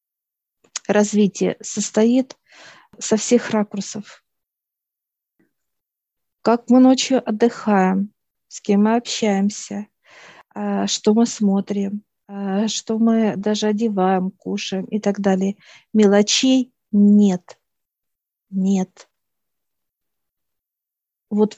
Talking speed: 80 wpm